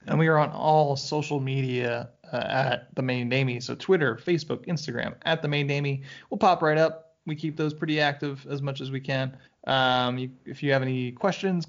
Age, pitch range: 20-39, 135-180 Hz